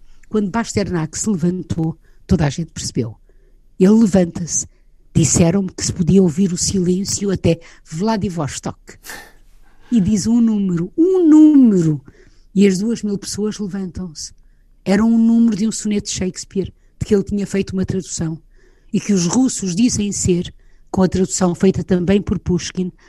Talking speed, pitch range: 155 wpm, 175-215 Hz